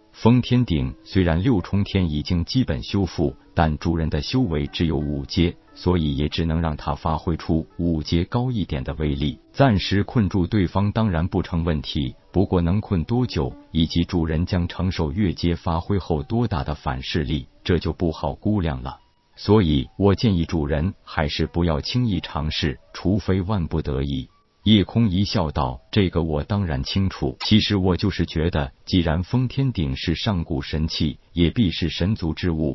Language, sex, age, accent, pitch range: Chinese, male, 50-69, native, 80-100 Hz